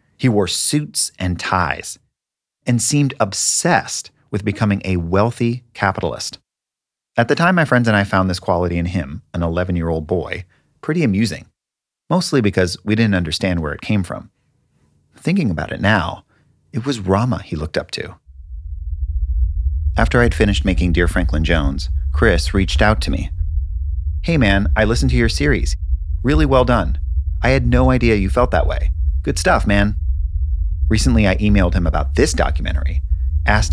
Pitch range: 75-100 Hz